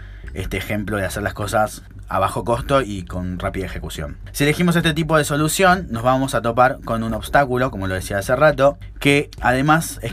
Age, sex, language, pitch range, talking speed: 20-39, male, Spanish, 105-145 Hz, 200 wpm